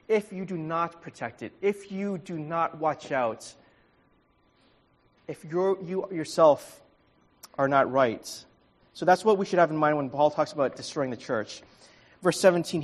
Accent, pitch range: American, 130-170 Hz